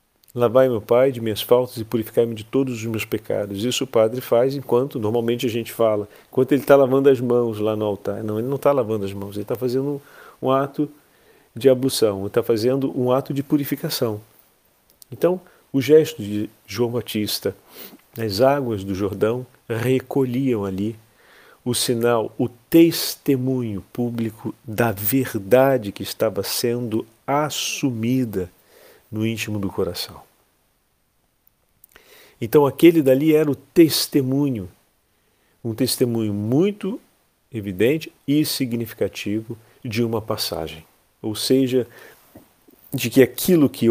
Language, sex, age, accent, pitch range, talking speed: Portuguese, male, 40-59, Brazilian, 110-135 Hz, 140 wpm